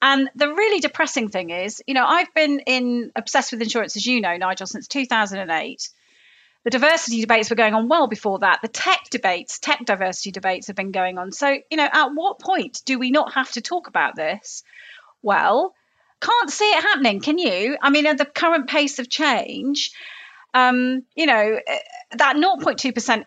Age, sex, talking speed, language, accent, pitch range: 40-59, female, 185 wpm, English, British, 210-290 Hz